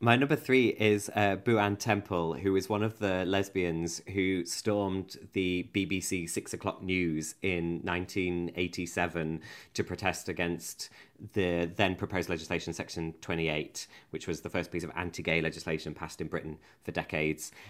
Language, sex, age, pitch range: English, male, 30-49, 85-100 Hz